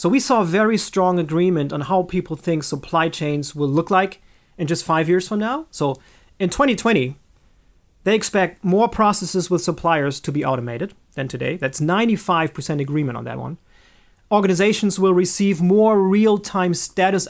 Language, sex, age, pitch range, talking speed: English, male, 30-49, 155-195 Hz, 165 wpm